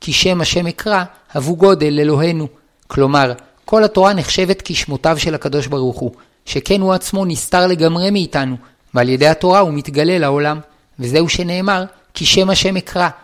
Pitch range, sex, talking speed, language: 150-190 Hz, male, 140 wpm, Hebrew